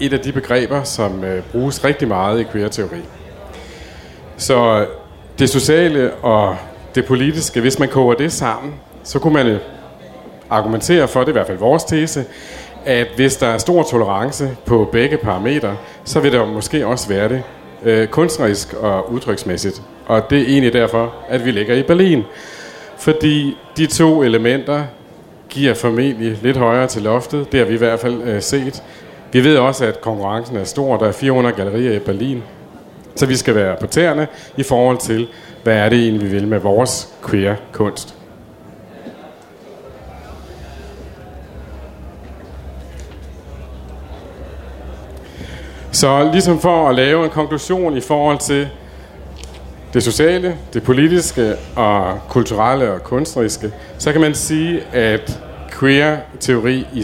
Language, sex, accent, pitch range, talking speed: Danish, male, native, 100-140 Hz, 145 wpm